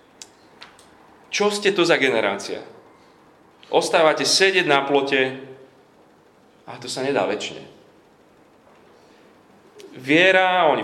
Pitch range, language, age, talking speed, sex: 115-165 Hz, Slovak, 30-49, 90 wpm, male